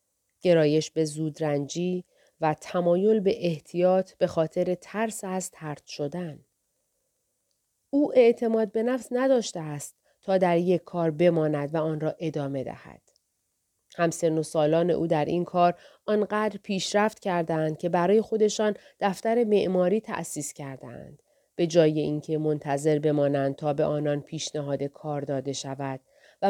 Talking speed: 135 wpm